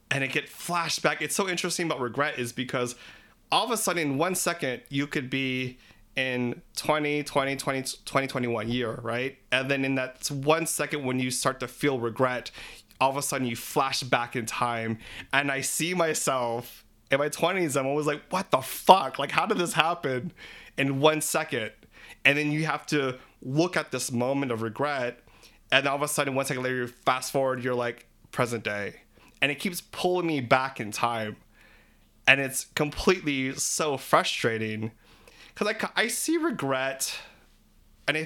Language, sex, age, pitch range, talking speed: English, male, 20-39, 120-145 Hz, 180 wpm